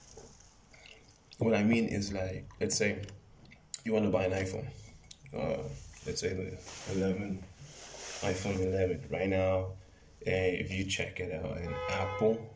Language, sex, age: English, male, 20-39